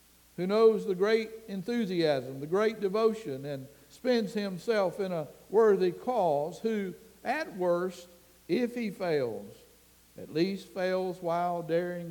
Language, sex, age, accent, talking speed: English, male, 60-79, American, 130 wpm